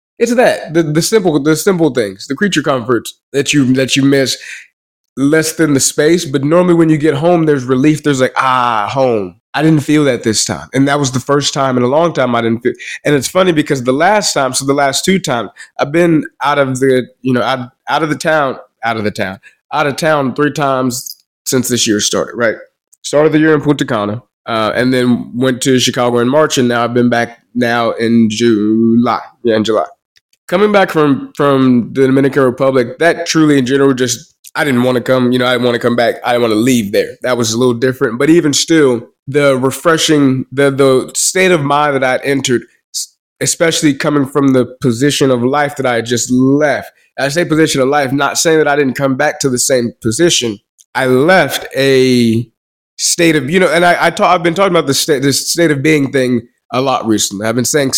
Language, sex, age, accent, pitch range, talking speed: English, male, 20-39, American, 125-155 Hz, 225 wpm